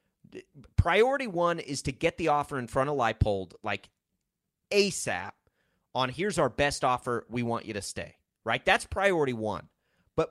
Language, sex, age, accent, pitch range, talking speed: English, male, 30-49, American, 120-175 Hz, 165 wpm